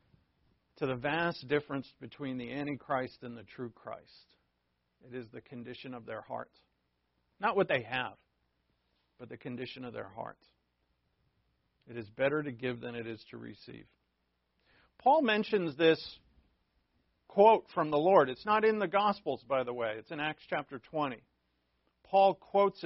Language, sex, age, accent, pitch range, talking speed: English, male, 50-69, American, 115-155 Hz, 160 wpm